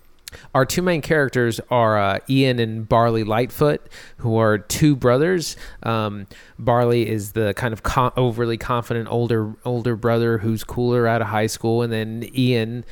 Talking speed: 165 wpm